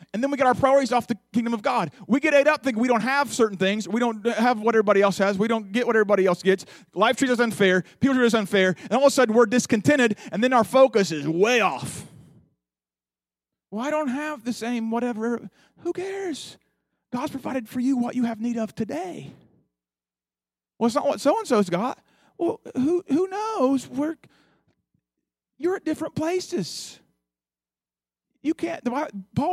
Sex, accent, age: male, American, 40-59